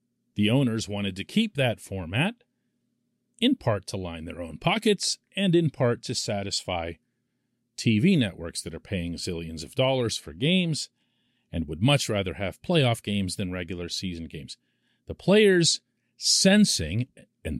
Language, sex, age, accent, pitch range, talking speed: English, male, 40-59, American, 100-135 Hz, 150 wpm